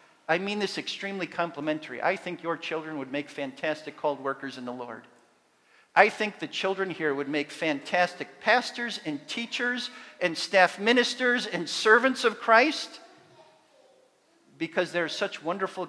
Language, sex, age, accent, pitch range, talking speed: English, male, 50-69, American, 175-255 Hz, 150 wpm